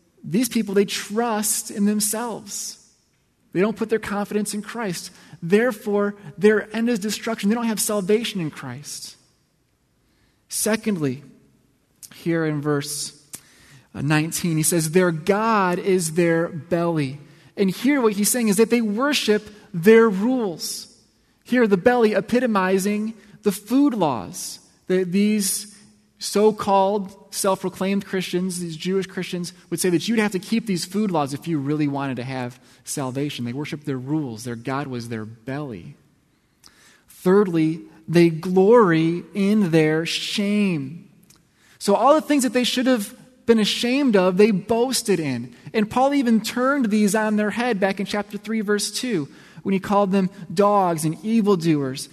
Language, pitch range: English, 165-215 Hz